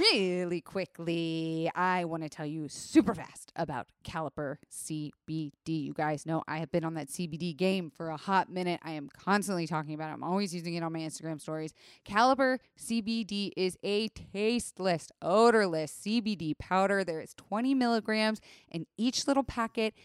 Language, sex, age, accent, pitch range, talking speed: English, female, 20-39, American, 160-220 Hz, 170 wpm